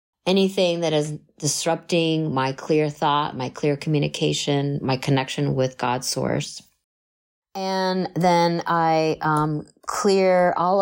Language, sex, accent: English, female, American